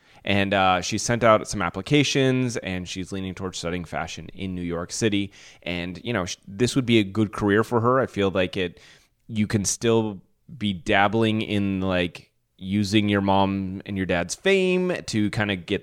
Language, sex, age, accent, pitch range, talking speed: English, male, 30-49, American, 90-115 Hz, 190 wpm